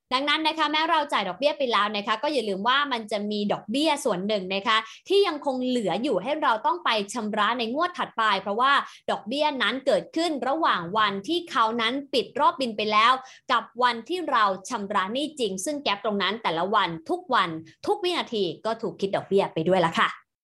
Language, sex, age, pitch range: English, female, 20-39, 215-280 Hz